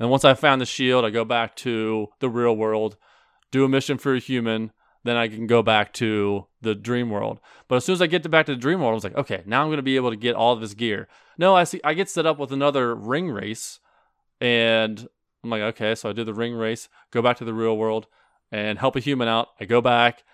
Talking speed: 265 wpm